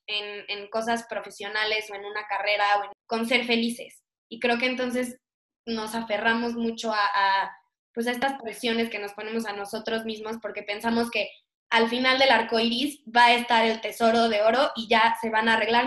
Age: 20-39